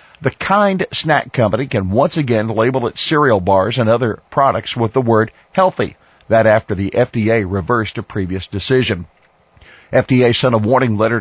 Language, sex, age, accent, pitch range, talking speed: English, male, 50-69, American, 105-135 Hz, 165 wpm